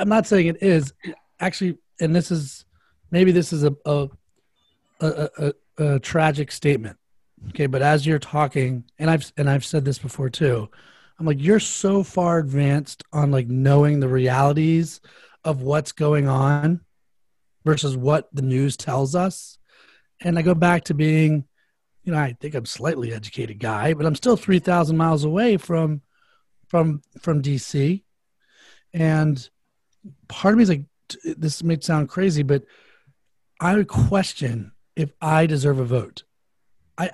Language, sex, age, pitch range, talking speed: English, male, 30-49, 140-165 Hz, 160 wpm